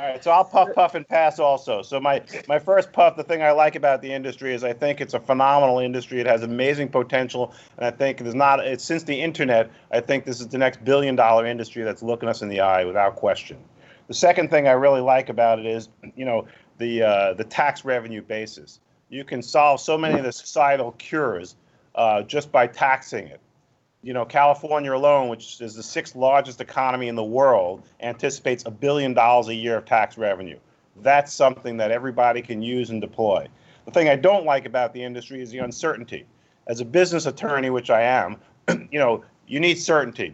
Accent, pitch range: American, 120-145 Hz